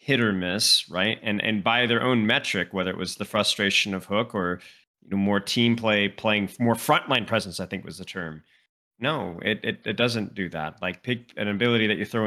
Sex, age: male, 30-49